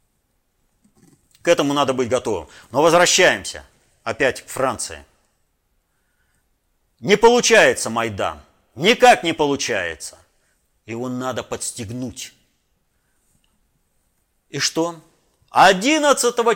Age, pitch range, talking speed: 50-69, 140-230 Hz, 85 wpm